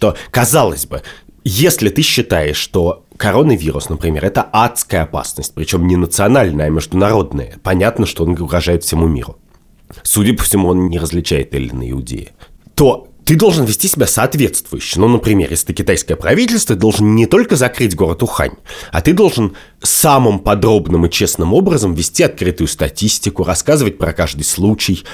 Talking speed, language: 160 wpm, Russian